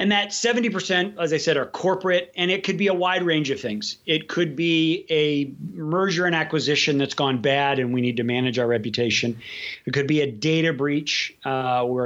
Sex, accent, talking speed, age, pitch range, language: male, American, 210 wpm, 40-59, 125-165 Hz, English